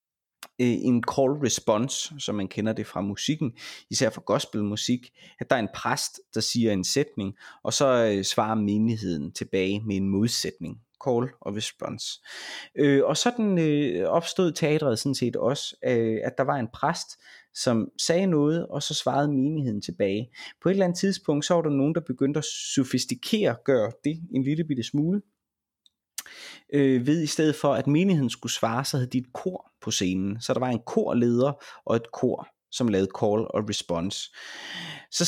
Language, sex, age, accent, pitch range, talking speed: Danish, male, 20-39, native, 110-150 Hz, 175 wpm